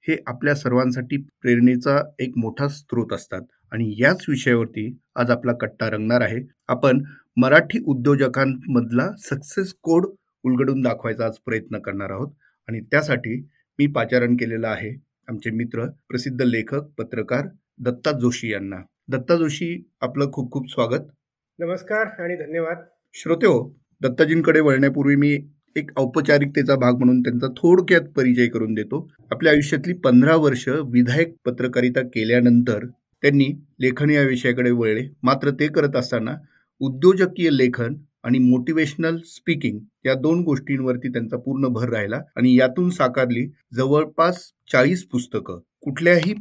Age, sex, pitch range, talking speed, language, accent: 30-49, male, 125-150 Hz, 125 wpm, Marathi, native